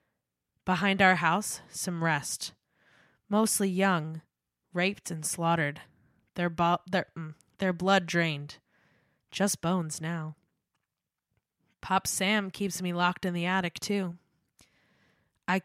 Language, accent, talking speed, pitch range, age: English, American, 110 wpm, 160-190 Hz, 20-39